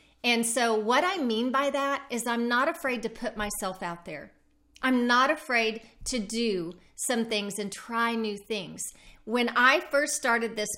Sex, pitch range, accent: female, 210-260 Hz, American